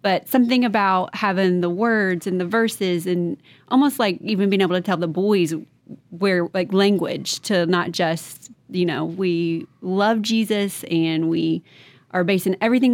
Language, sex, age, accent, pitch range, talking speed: English, female, 30-49, American, 175-215 Hz, 160 wpm